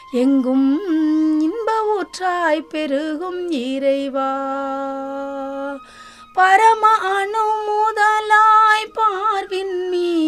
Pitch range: 290-420 Hz